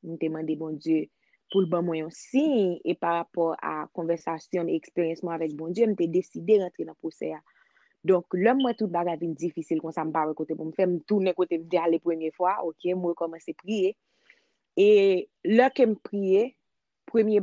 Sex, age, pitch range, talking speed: female, 20-39, 175-215 Hz, 235 wpm